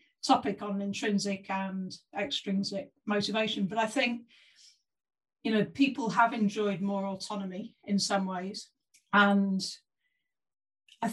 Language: English